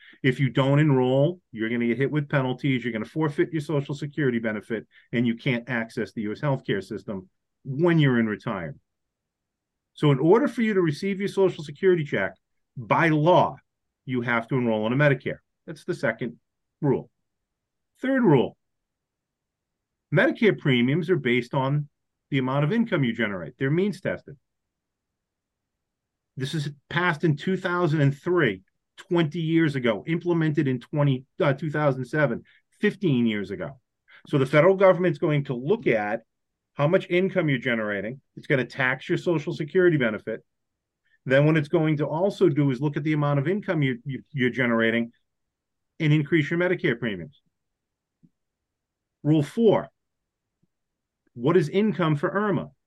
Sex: male